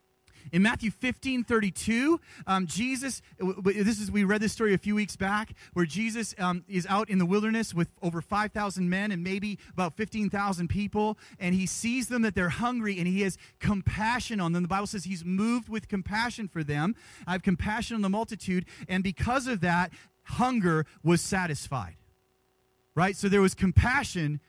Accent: American